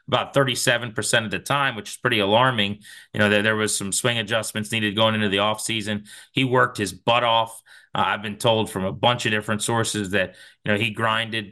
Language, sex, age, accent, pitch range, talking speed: English, male, 30-49, American, 105-130 Hz, 220 wpm